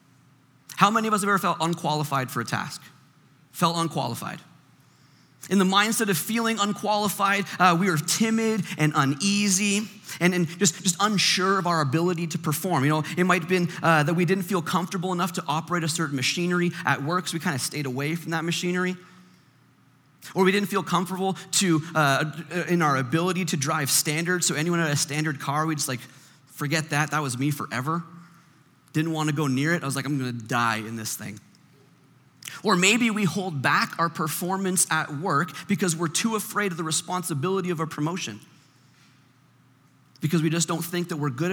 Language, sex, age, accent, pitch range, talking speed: English, male, 30-49, American, 140-185 Hz, 195 wpm